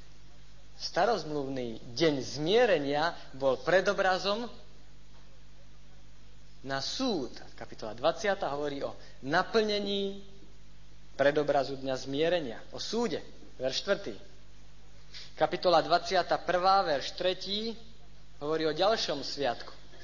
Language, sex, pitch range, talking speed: Slovak, male, 130-175 Hz, 80 wpm